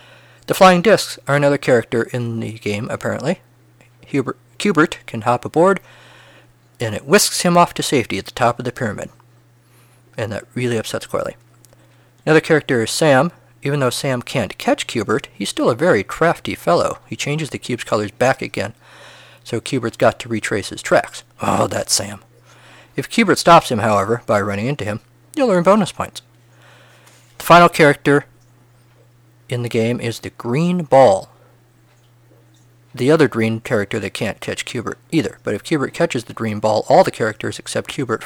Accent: American